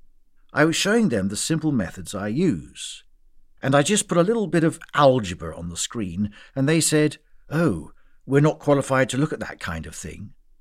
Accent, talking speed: British, 200 wpm